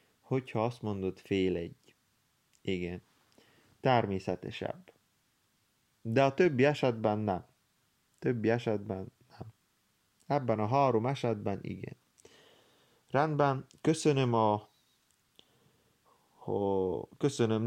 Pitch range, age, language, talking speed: 105-135 Hz, 30-49, Hungarian, 80 wpm